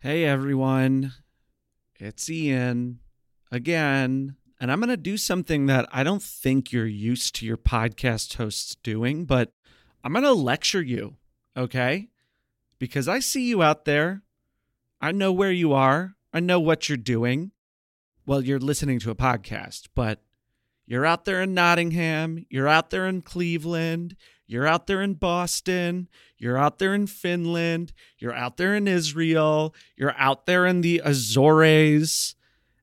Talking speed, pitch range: 150 wpm, 125-165 Hz